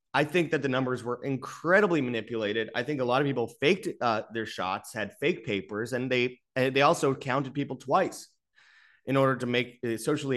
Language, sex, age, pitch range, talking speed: English, male, 20-39, 105-145 Hz, 190 wpm